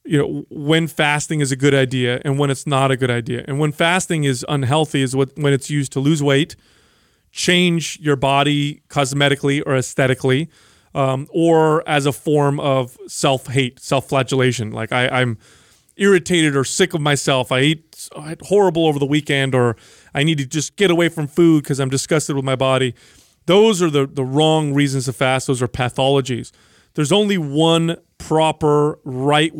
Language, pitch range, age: English, 130-155 Hz, 30-49